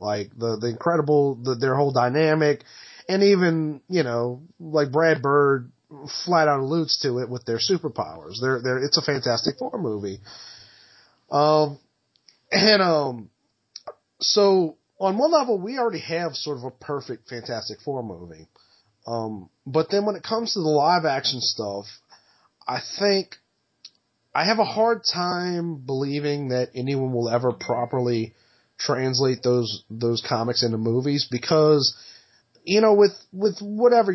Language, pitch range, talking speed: English, 125-165 Hz, 150 wpm